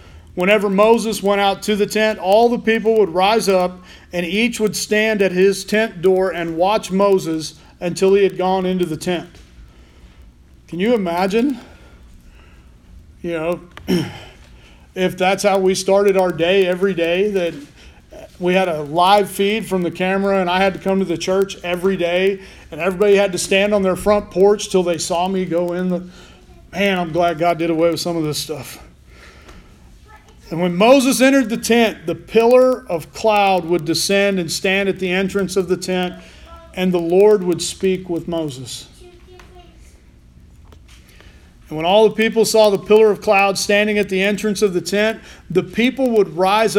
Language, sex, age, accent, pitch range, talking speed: English, male, 40-59, American, 170-205 Hz, 180 wpm